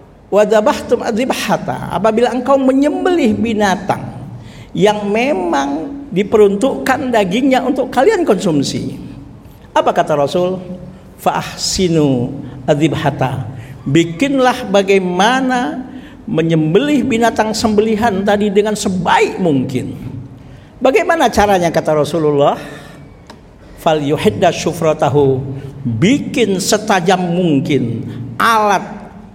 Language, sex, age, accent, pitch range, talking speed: Indonesian, male, 50-69, native, 140-220 Hz, 75 wpm